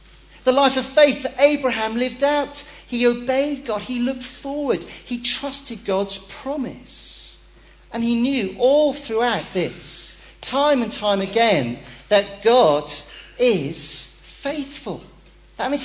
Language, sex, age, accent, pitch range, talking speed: English, male, 40-59, British, 190-265 Hz, 130 wpm